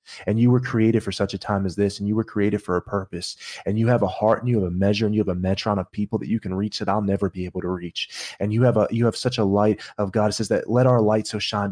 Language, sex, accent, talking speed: English, male, American, 330 wpm